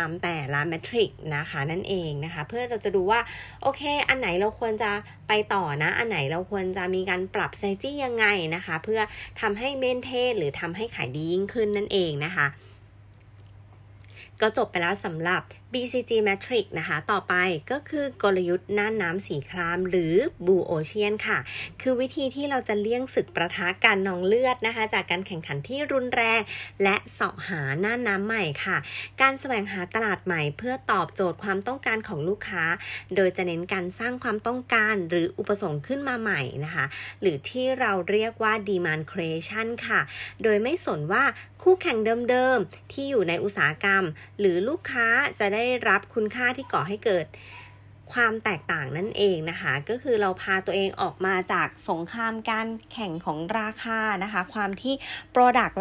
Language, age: Thai, 20-39